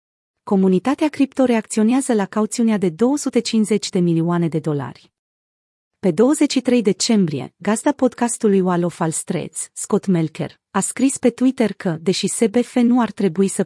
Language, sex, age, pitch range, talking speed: Romanian, female, 30-49, 180-225 Hz, 135 wpm